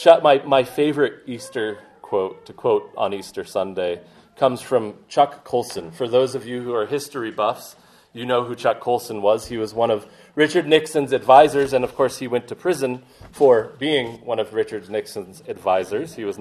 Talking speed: 185 wpm